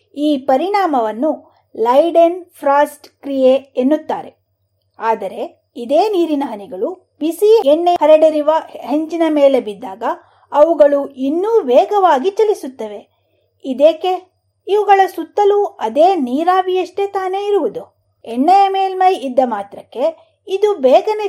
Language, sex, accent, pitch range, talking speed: Kannada, female, native, 270-355 Hz, 95 wpm